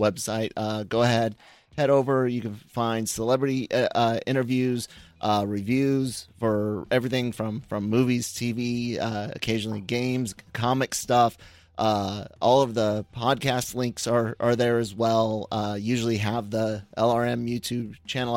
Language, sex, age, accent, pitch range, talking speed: English, male, 30-49, American, 110-120 Hz, 140 wpm